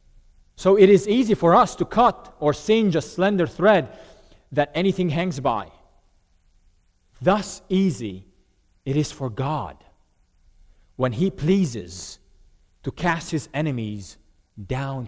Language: English